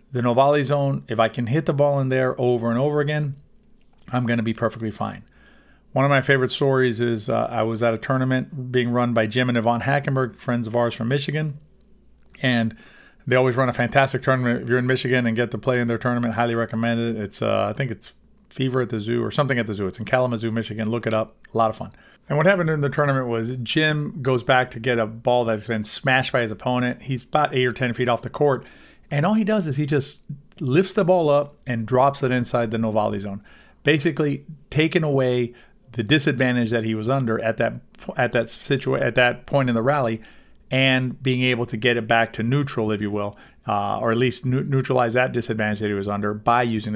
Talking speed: 235 wpm